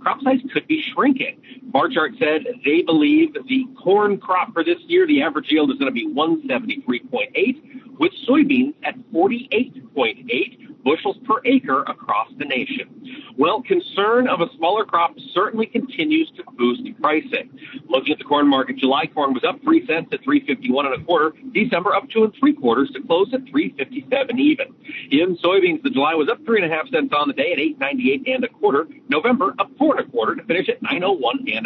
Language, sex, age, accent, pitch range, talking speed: English, male, 50-69, American, 220-290 Hz, 195 wpm